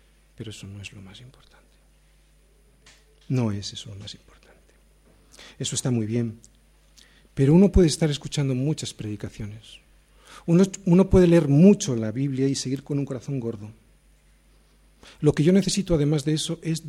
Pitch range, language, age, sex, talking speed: 105-155 Hz, Spanish, 50-69, male, 160 wpm